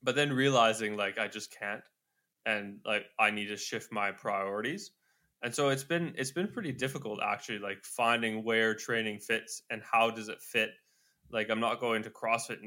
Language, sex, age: English, male, 10-29